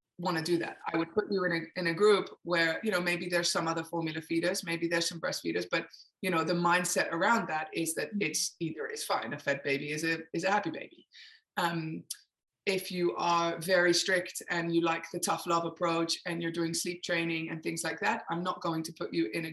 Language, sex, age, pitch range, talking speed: English, female, 20-39, 165-190 Hz, 245 wpm